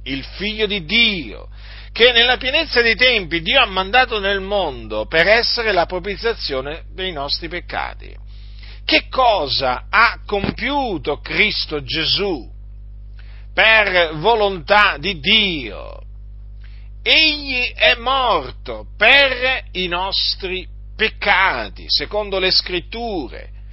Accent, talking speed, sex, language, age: native, 105 wpm, male, Italian, 50-69